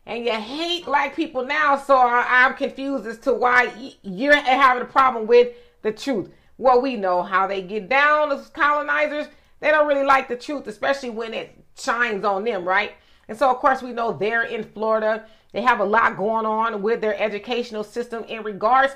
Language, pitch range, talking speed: English, 210-265 Hz, 195 wpm